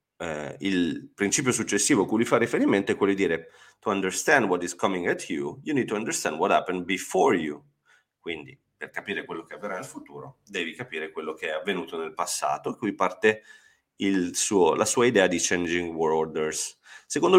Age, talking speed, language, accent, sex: 30-49, 195 wpm, Italian, native, male